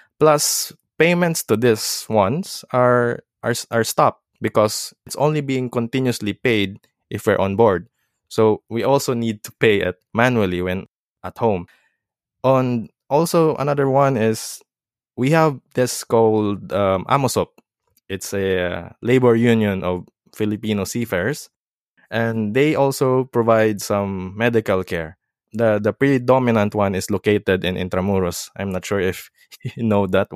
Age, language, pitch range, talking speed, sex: 20-39, English, 100-135 Hz, 140 wpm, male